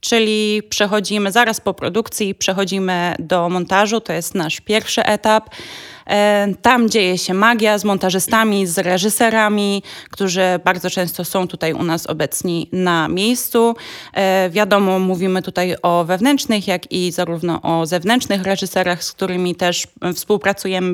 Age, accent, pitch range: 20-39, native, 180-215 Hz